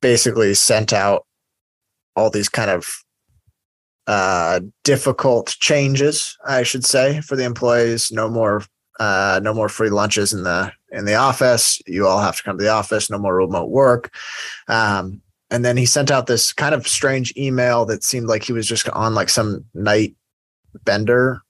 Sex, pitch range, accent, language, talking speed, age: male, 105-120 Hz, American, English, 175 wpm, 20-39